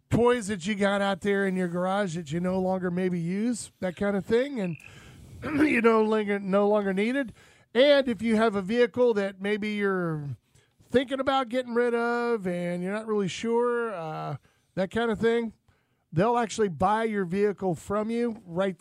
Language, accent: English, American